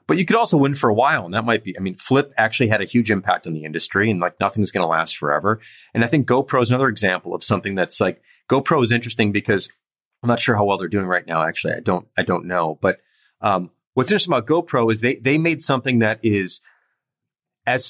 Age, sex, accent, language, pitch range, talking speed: 30-49, male, American, English, 105-130 Hz, 250 wpm